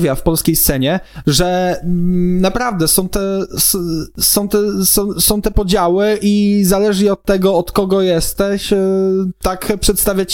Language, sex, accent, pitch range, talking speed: Polish, male, native, 155-190 Hz, 120 wpm